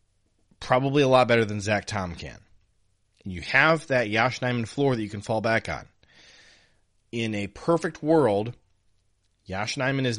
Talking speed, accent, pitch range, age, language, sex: 160 wpm, American, 100-125 Hz, 30-49, English, male